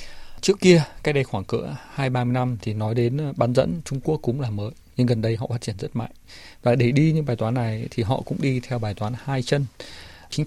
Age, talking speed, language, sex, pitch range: 20-39, 260 wpm, Vietnamese, male, 105-130 Hz